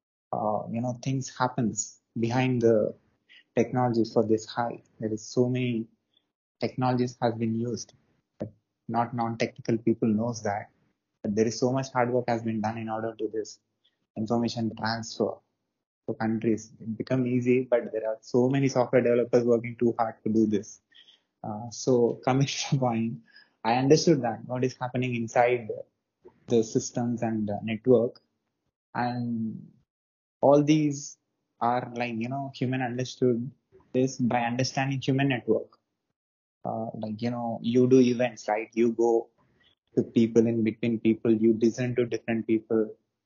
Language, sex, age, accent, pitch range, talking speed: English, male, 20-39, Indian, 110-125 Hz, 155 wpm